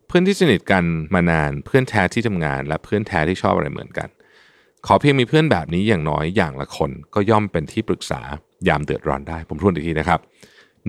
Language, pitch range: Thai, 80-110 Hz